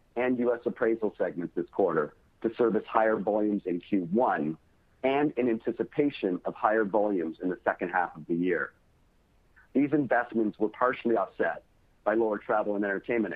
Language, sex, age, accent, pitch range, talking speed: English, male, 50-69, American, 105-130 Hz, 155 wpm